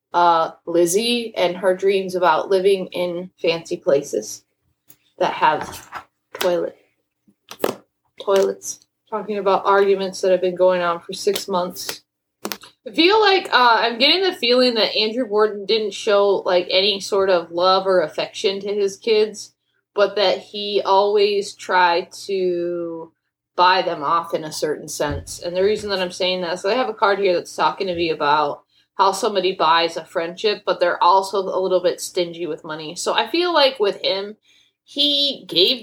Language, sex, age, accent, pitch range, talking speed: English, female, 20-39, American, 180-215 Hz, 170 wpm